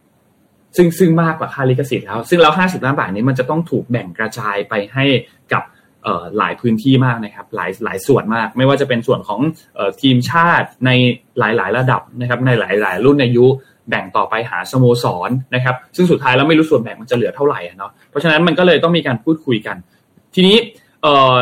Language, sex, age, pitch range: Thai, male, 20-39, 120-150 Hz